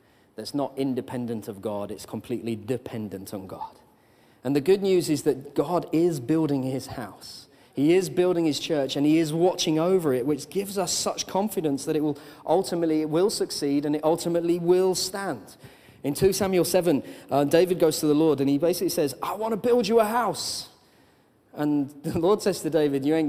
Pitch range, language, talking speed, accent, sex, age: 140-185 Hz, English, 200 wpm, British, male, 30-49